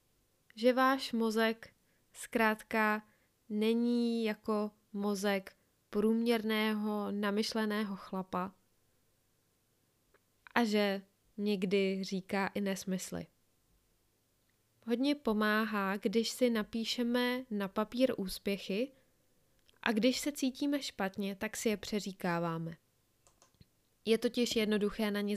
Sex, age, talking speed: female, 20-39, 90 wpm